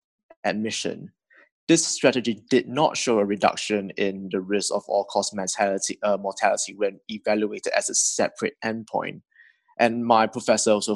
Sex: male